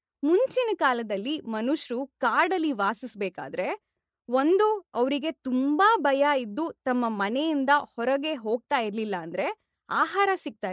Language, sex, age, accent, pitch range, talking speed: Kannada, female, 20-39, native, 225-315 Hz, 100 wpm